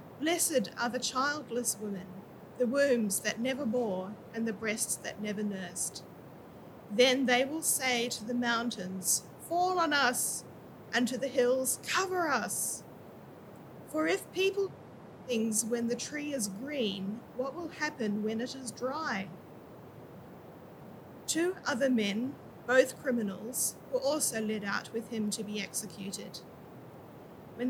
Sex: female